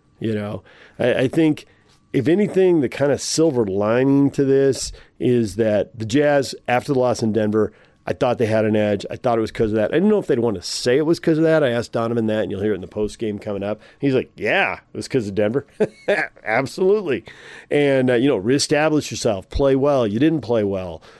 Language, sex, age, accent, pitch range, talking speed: English, male, 40-59, American, 110-140 Hz, 240 wpm